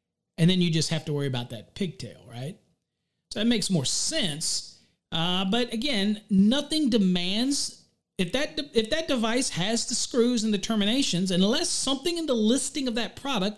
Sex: male